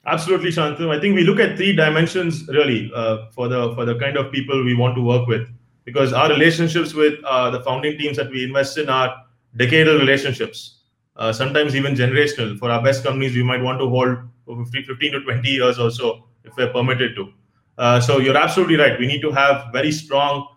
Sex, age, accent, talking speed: male, 20-39, Indian, 215 wpm